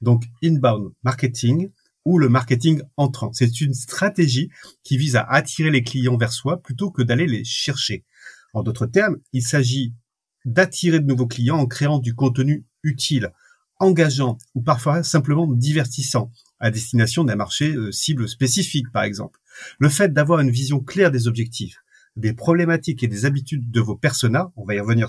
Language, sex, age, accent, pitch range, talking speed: French, male, 40-59, French, 120-160 Hz, 165 wpm